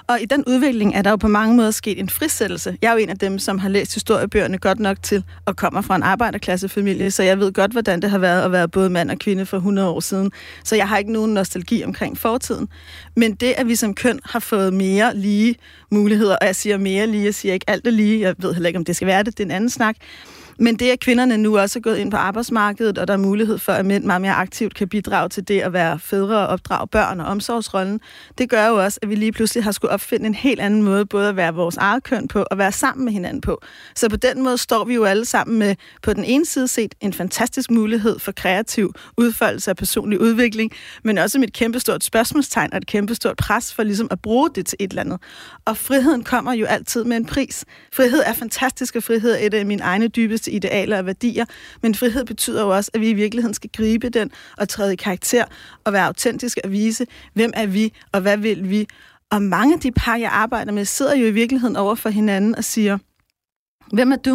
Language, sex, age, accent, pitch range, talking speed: Danish, female, 30-49, native, 200-235 Hz, 250 wpm